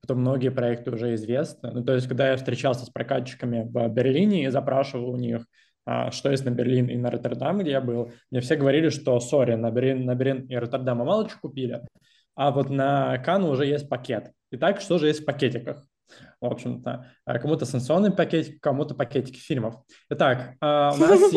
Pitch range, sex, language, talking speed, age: 130-150 Hz, male, Russian, 190 wpm, 20-39